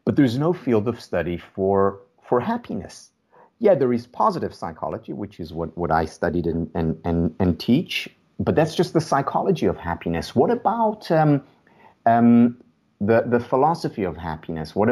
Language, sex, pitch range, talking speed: English, male, 100-145 Hz, 170 wpm